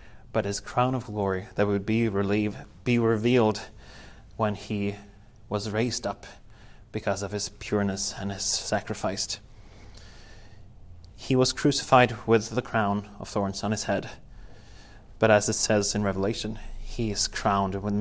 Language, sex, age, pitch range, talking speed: English, male, 30-49, 100-120 Hz, 145 wpm